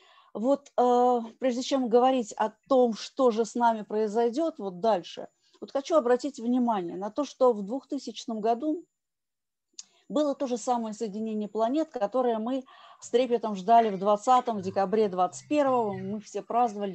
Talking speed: 150 wpm